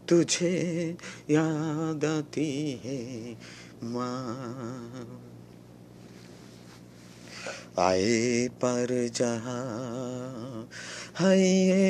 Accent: native